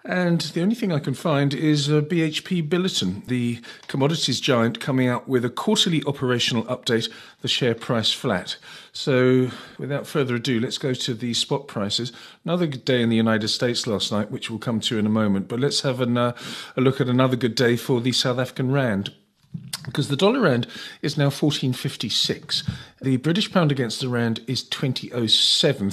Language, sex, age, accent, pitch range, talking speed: English, male, 40-59, British, 115-145 Hz, 185 wpm